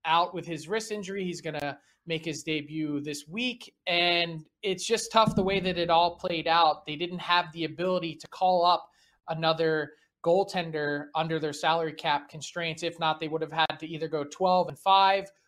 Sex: male